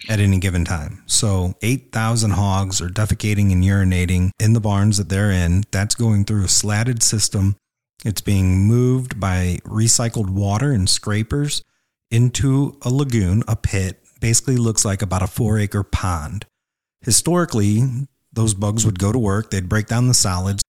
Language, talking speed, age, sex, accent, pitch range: English, 160 wpm, 30-49, male, American, 100-125 Hz